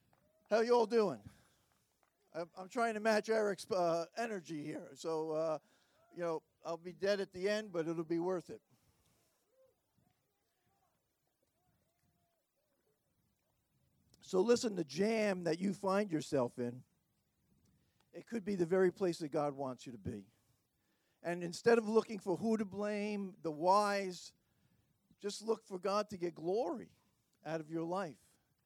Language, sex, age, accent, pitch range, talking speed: English, male, 50-69, American, 180-245 Hz, 140 wpm